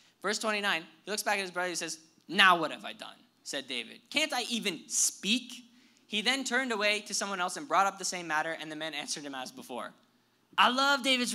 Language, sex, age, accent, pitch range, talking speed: English, male, 10-29, American, 165-220 Hz, 240 wpm